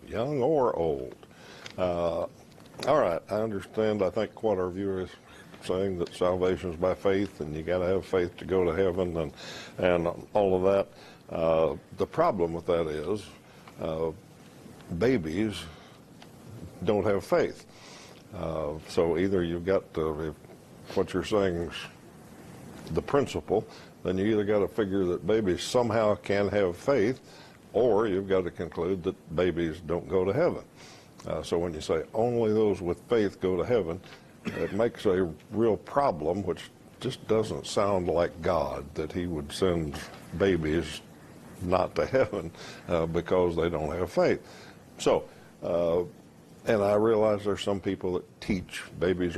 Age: 60-79